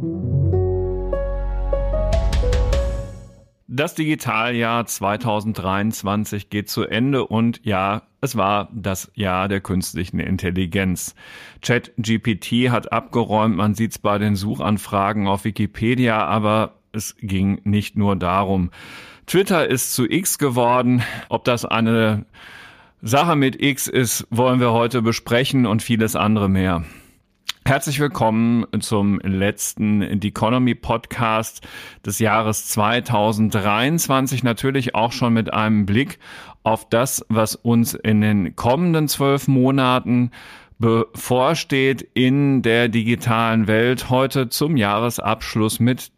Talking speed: 110 wpm